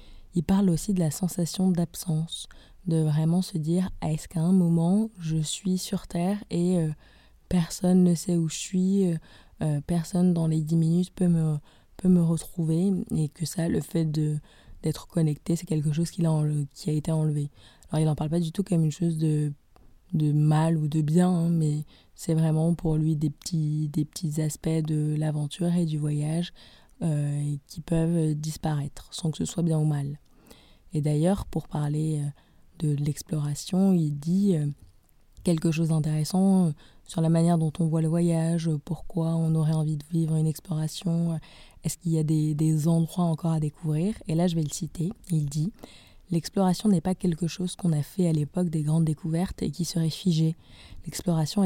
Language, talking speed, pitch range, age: French, 190 wpm, 155-175 Hz, 20-39